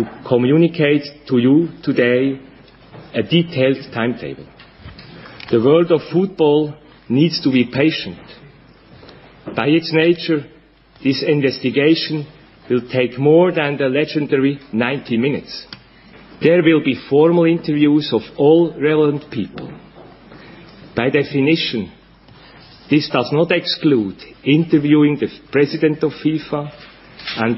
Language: English